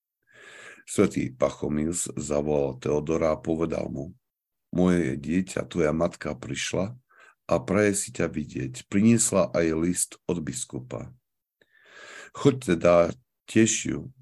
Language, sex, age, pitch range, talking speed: Slovak, male, 60-79, 80-100 Hz, 105 wpm